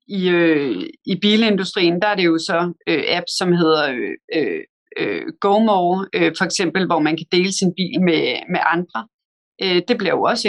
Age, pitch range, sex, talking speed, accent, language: 30-49, 175-210 Hz, female, 190 wpm, native, Danish